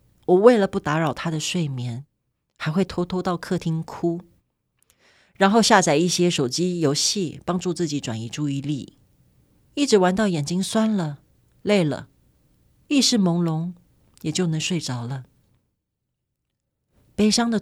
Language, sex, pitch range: Chinese, female, 140-185 Hz